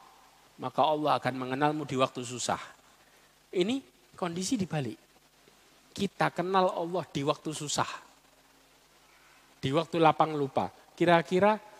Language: Indonesian